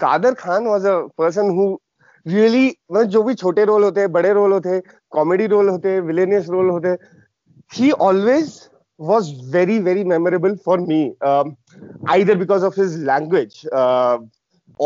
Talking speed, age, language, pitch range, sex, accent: 160 wpm, 30-49, Hindi, 165-215 Hz, male, native